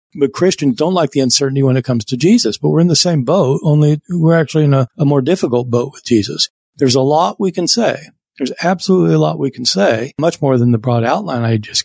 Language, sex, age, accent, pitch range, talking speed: English, male, 50-69, American, 115-145 Hz, 250 wpm